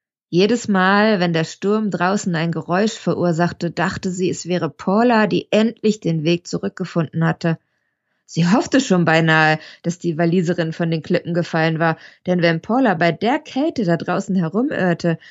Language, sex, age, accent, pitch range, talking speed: German, female, 20-39, German, 160-190 Hz, 160 wpm